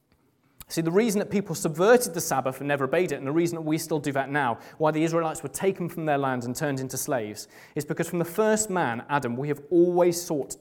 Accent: British